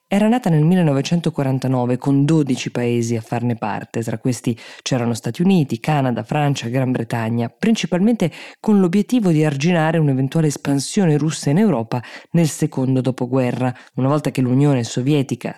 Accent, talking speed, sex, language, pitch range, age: native, 145 wpm, female, Italian, 125-165 Hz, 20-39